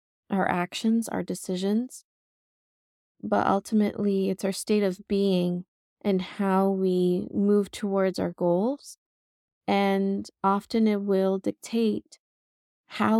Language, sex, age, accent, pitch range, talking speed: English, female, 20-39, American, 180-210 Hz, 110 wpm